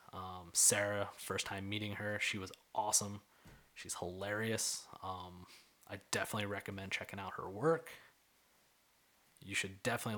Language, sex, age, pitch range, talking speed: English, male, 20-39, 95-110 Hz, 130 wpm